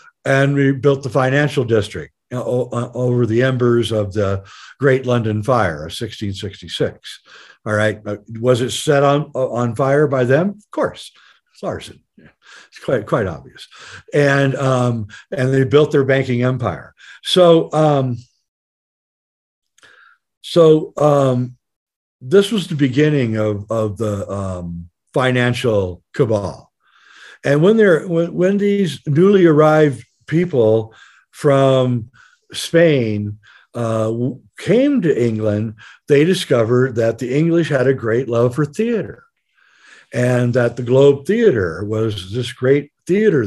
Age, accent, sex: 60-79, American, male